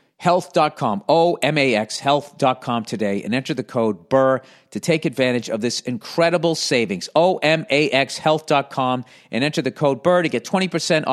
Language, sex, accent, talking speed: English, male, American, 140 wpm